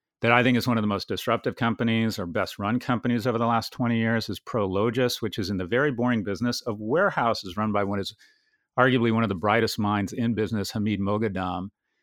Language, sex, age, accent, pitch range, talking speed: English, male, 40-59, American, 100-120 Hz, 220 wpm